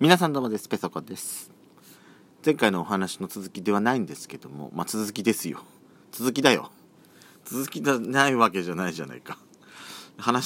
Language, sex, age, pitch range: Japanese, male, 40-59, 85-130 Hz